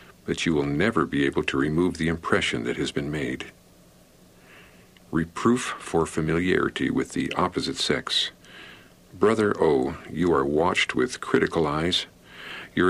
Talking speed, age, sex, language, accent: 140 wpm, 60-79, male, English, American